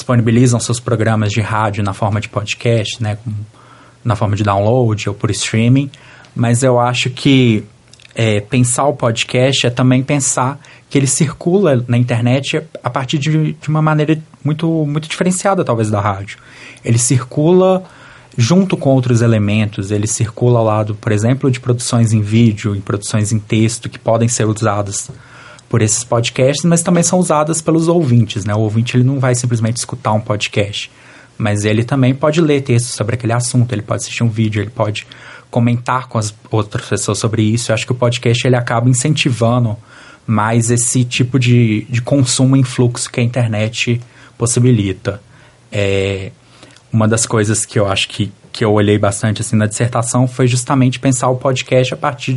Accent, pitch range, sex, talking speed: Brazilian, 110-135 Hz, male, 175 wpm